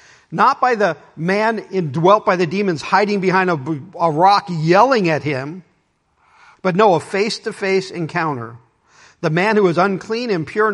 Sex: male